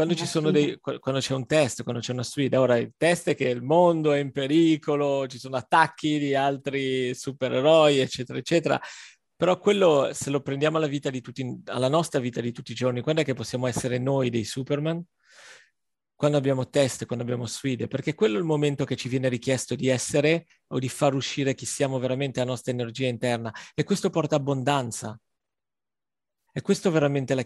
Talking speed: 200 wpm